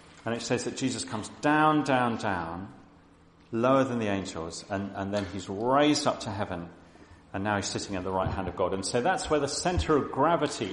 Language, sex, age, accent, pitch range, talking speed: English, male, 40-59, British, 90-115 Hz, 220 wpm